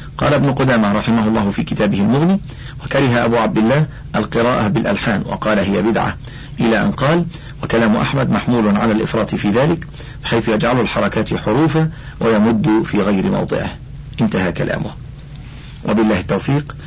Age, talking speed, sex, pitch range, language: 50-69, 140 wpm, male, 115-145 Hz, Arabic